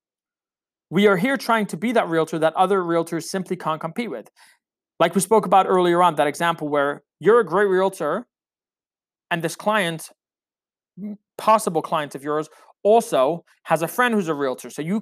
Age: 30-49